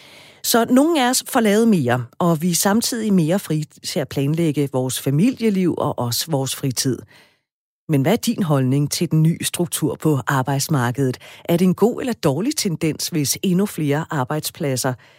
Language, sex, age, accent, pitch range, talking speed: Danish, female, 40-59, native, 145-190 Hz, 170 wpm